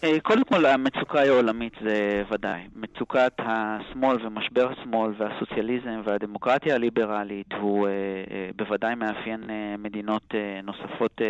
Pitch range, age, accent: 105-130 Hz, 30-49, Italian